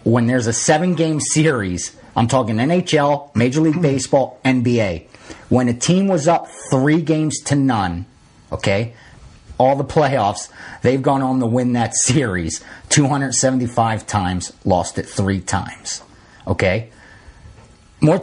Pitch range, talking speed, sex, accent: 115-150 Hz, 130 wpm, male, American